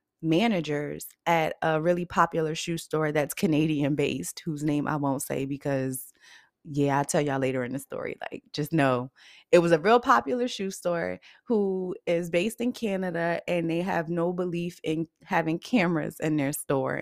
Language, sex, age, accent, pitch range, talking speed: English, female, 20-39, American, 150-180 Hz, 175 wpm